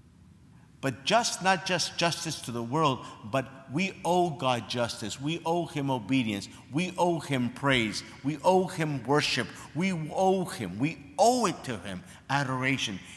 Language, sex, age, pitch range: English, male, 50-69, 115-165 Hz